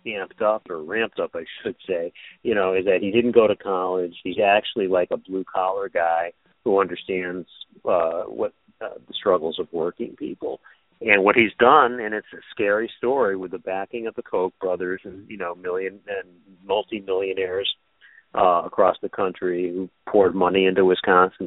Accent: American